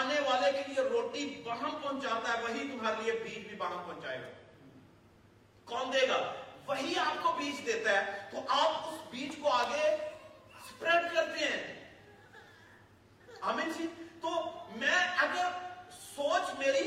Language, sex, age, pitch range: Urdu, male, 40-59, 230-315 Hz